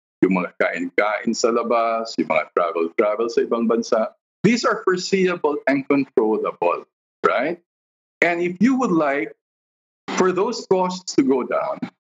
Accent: Filipino